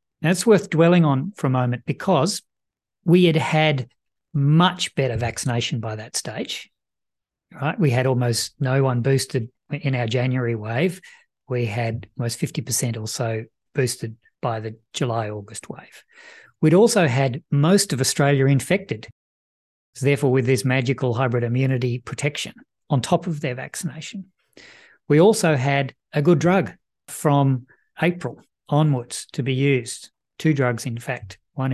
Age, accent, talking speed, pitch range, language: 50-69, Australian, 150 wpm, 125-155 Hz, English